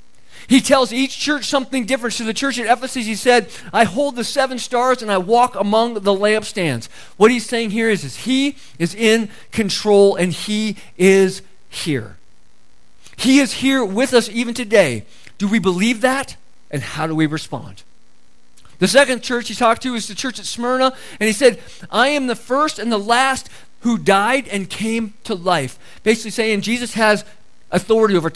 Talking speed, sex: 185 wpm, male